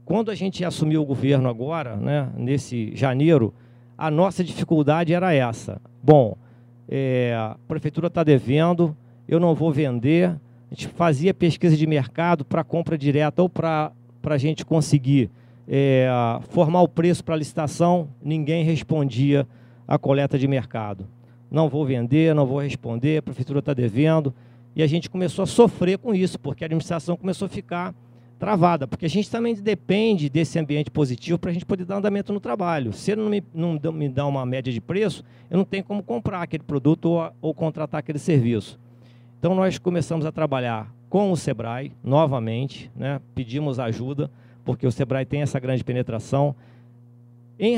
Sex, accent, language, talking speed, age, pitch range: male, Brazilian, Portuguese, 170 wpm, 40-59, 125-165 Hz